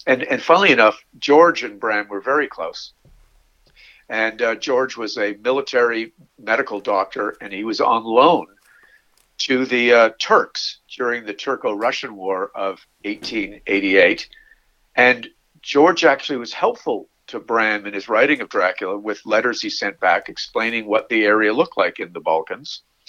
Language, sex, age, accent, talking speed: English, male, 50-69, American, 155 wpm